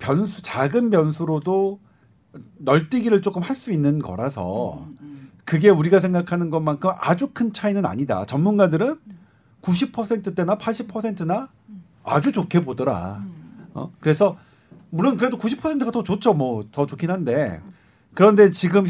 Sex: male